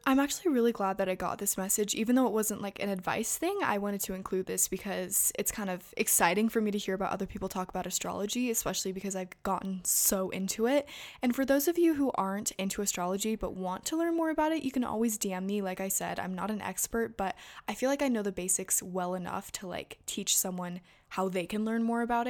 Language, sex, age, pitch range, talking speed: English, female, 20-39, 190-235 Hz, 250 wpm